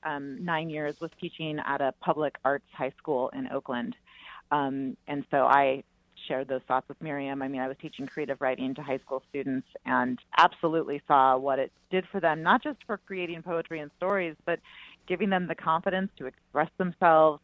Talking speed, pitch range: 195 wpm, 135-165 Hz